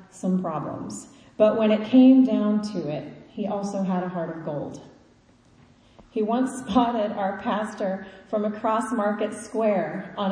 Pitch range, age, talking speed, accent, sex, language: 195-255 Hz, 30-49, 150 wpm, American, female, English